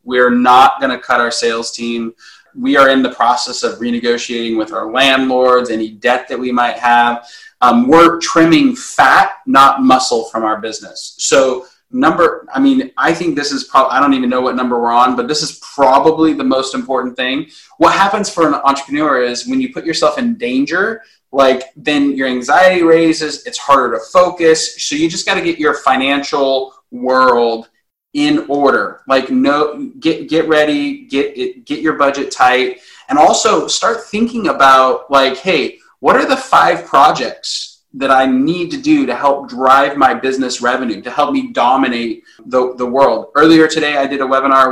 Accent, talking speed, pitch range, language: American, 180 wpm, 125-190 Hz, English